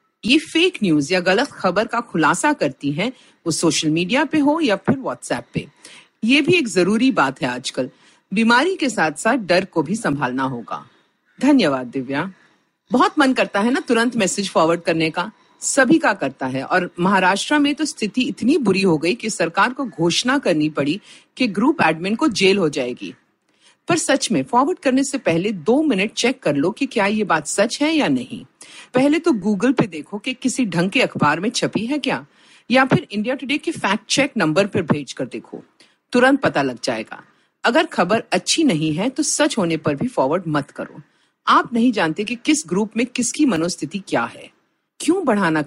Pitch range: 180-280 Hz